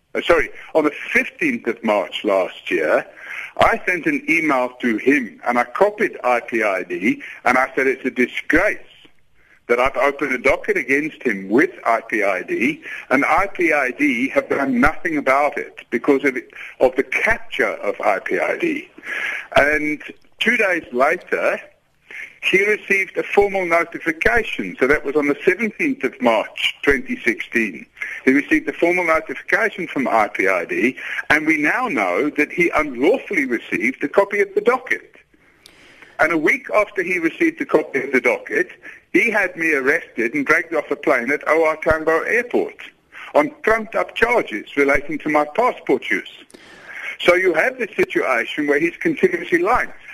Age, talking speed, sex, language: 60-79, 150 wpm, male, English